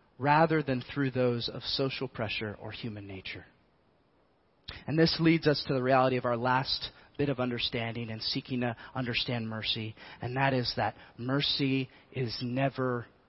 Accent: American